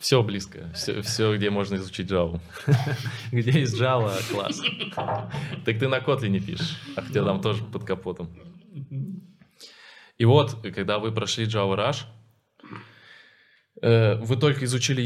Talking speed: 130 wpm